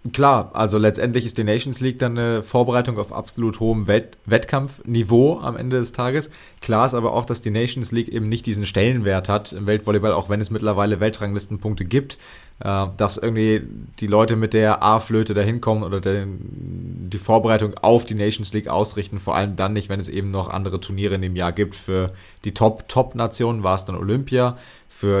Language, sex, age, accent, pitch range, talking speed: German, male, 20-39, German, 100-115 Hz, 190 wpm